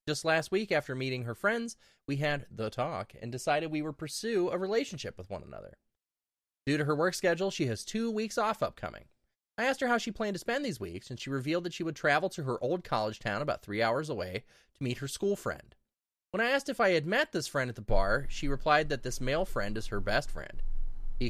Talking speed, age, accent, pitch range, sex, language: 240 wpm, 20-39, American, 130-200 Hz, male, English